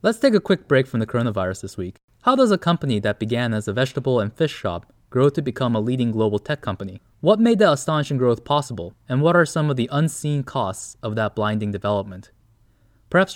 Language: English